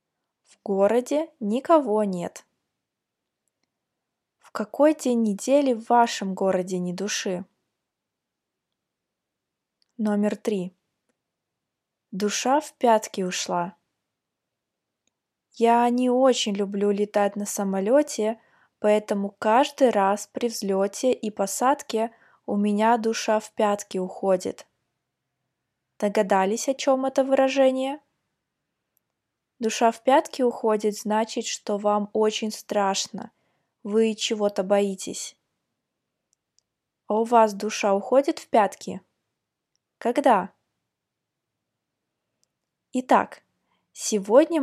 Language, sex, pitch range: Russian, female, 200-240 Hz